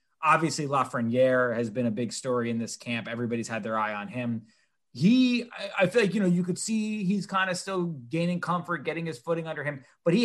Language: English